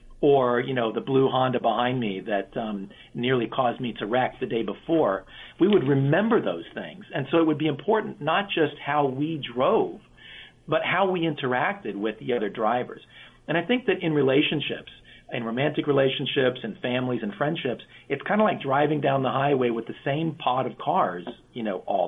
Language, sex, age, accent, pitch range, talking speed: English, male, 50-69, American, 120-155 Hz, 195 wpm